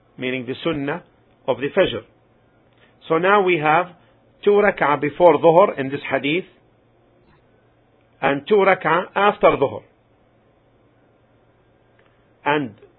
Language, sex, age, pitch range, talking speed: English, male, 50-69, 125-175 Hz, 105 wpm